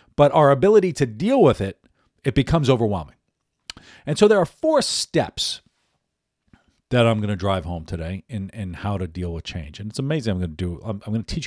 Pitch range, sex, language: 90-130 Hz, male, English